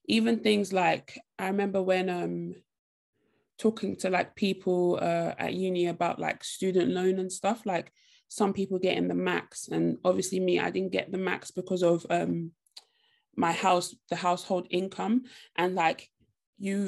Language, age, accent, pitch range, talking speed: English, 20-39, British, 175-200 Hz, 165 wpm